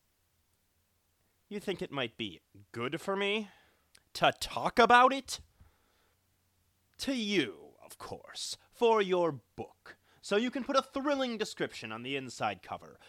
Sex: male